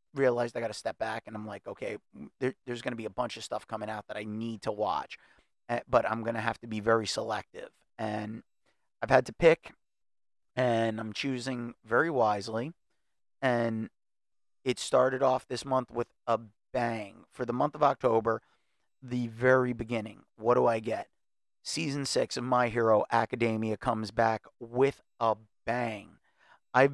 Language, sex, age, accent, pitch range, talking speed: English, male, 30-49, American, 115-130 Hz, 170 wpm